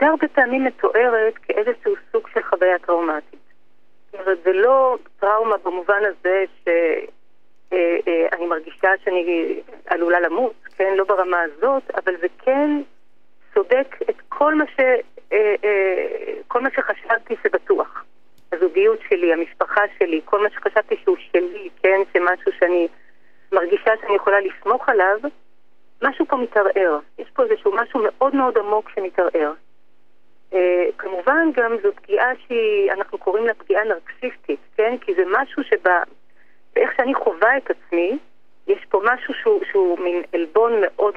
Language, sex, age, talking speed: Hebrew, female, 40-59, 145 wpm